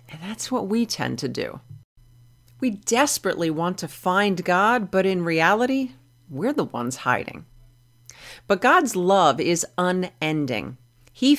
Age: 50-69